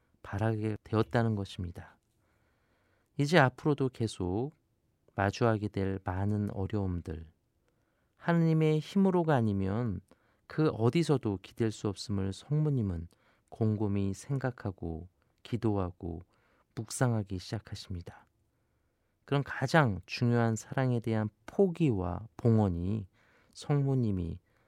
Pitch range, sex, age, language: 95-120 Hz, male, 40-59, Korean